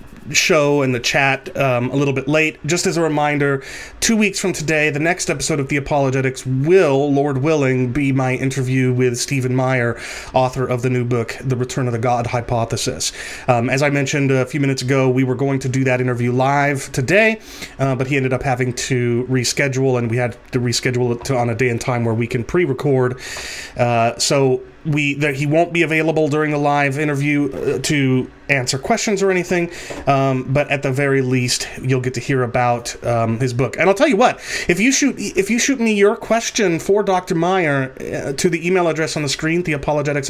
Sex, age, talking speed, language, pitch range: male, 30-49, 205 wpm, English, 125-160 Hz